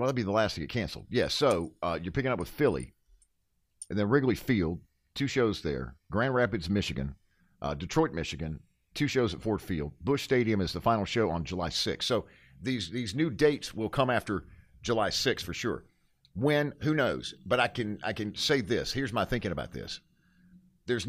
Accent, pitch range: American, 90-130 Hz